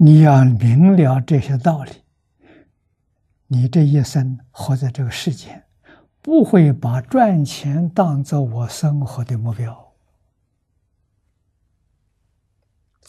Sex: male